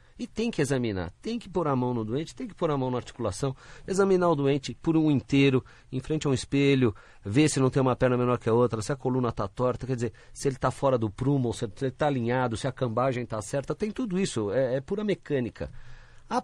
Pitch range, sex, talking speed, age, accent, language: 125-155 Hz, male, 250 wpm, 40-59, Brazilian, Portuguese